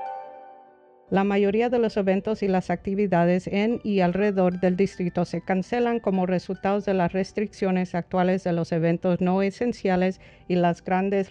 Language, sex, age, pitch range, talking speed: English, female, 50-69, 170-200 Hz, 155 wpm